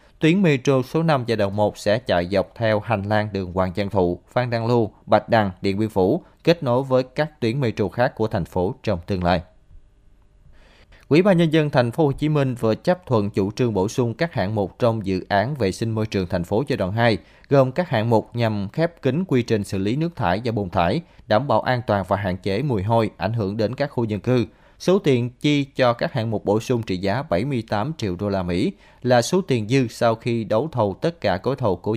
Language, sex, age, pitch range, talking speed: Vietnamese, male, 20-39, 95-125 Hz, 245 wpm